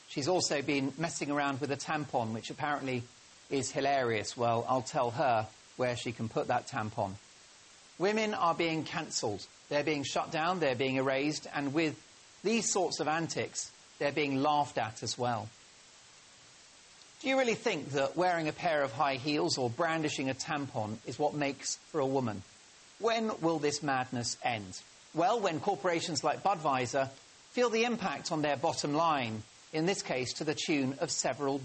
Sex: male